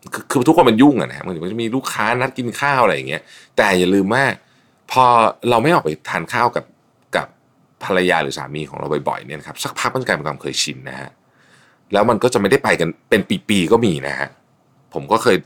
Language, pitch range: Thai, 85-120 Hz